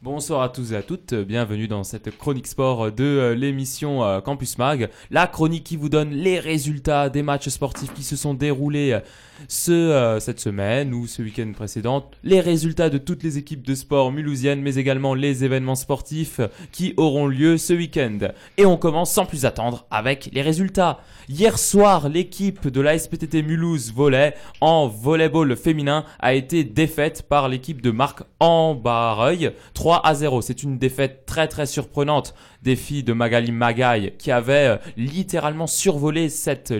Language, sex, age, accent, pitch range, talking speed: French, male, 20-39, French, 125-160 Hz, 165 wpm